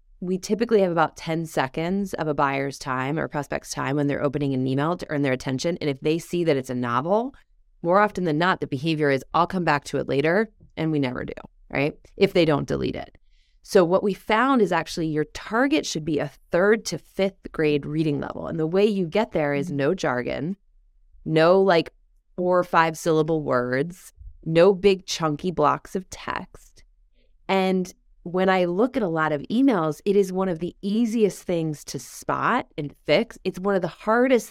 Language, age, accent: English, 20-39, American